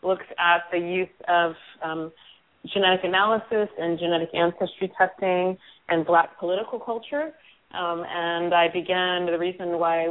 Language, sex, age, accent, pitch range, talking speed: English, female, 30-49, American, 160-180 Hz, 140 wpm